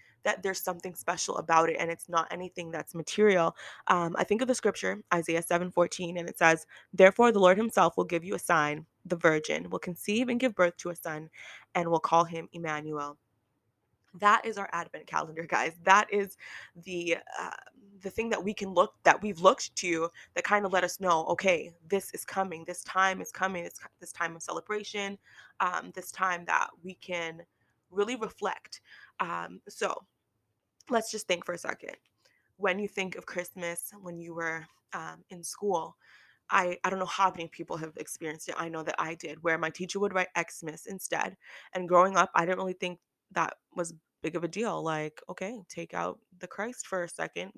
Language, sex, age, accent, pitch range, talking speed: English, female, 20-39, American, 165-195 Hz, 200 wpm